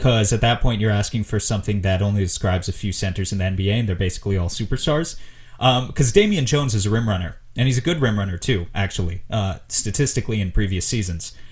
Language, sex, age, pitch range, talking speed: English, male, 30-49, 105-125 Hz, 225 wpm